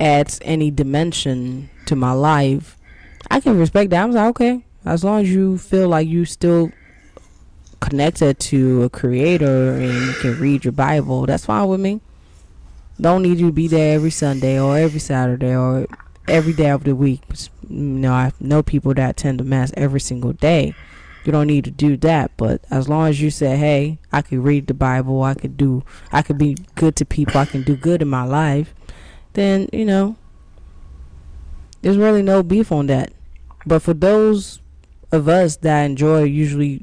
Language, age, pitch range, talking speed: English, 10-29, 130-160 Hz, 190 wpm